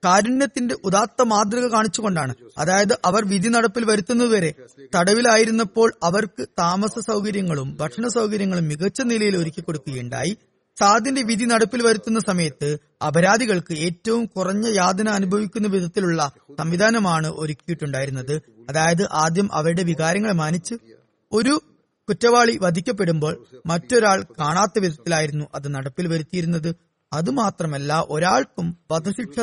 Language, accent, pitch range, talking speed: Malayalam, native, 160-220 Hz, 100 wpm